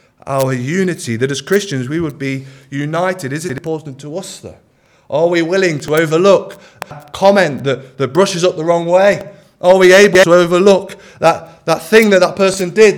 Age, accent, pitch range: 20-39, British, 155-200 Hz